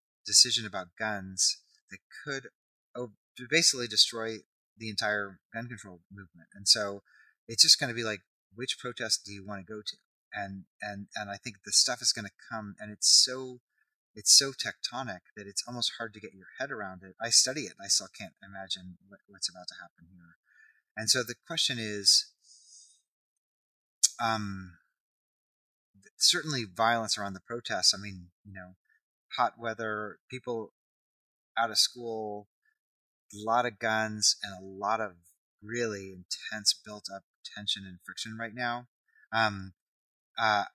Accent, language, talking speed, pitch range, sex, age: American, English, 160 wpm, 100-115 Hz, male, 30-49